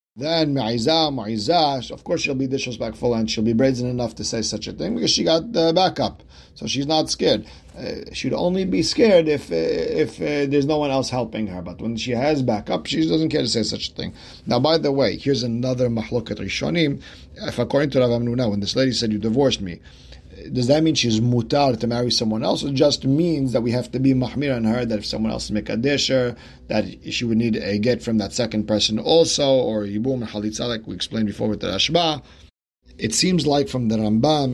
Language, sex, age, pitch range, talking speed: English, male, 40-59, 110-135 Hz, 225 wpm